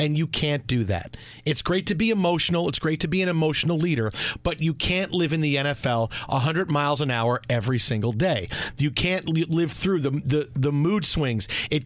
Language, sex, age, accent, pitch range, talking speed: English, male, 40-59, American, 140-190 Hz, 215 wpm